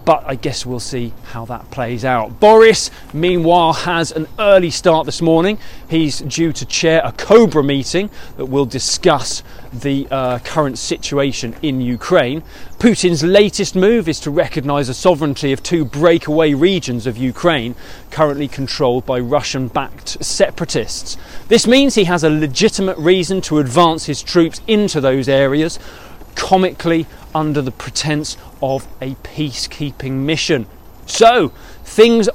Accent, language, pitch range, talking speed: British, English, 135-175 Hz, 140 wpm